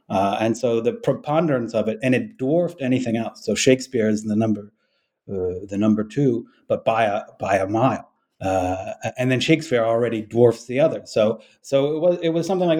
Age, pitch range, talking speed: 30-49, 110-135 Hz, 200 wpm